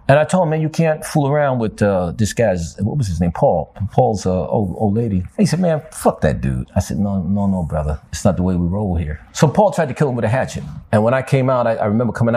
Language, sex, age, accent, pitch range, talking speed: English, male, 50-69, American, 95-150 Hz, 295 wpm